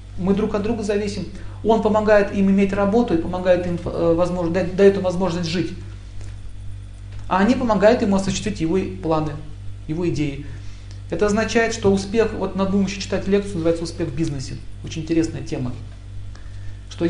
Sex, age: male, 40-59